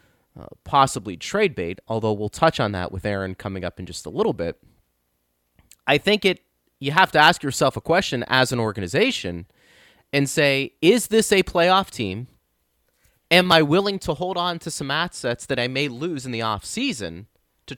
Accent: American